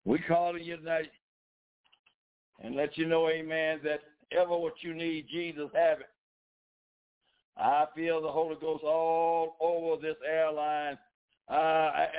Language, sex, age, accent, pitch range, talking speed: English, male, 60-79, American, 165-200 Hz, 140 wpm